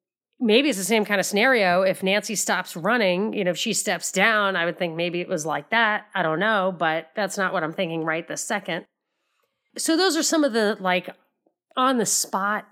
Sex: female